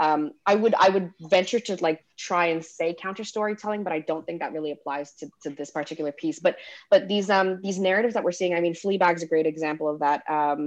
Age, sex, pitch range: 20-39, female, 165-215 Hz